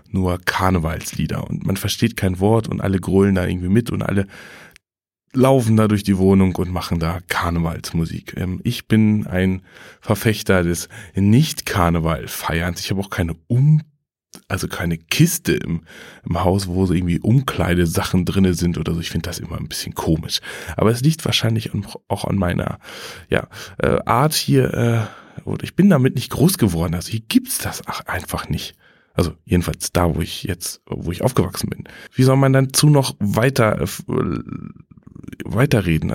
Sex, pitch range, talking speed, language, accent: male, 90-120 Hz, 170 wpm, German, German